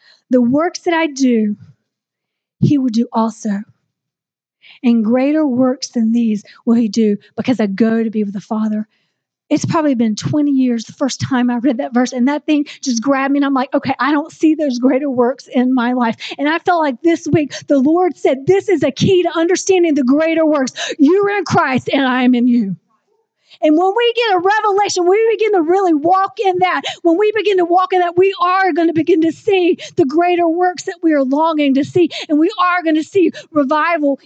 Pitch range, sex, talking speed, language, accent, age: 265-360 Hz, female, 215 wpm, English, American, 40-59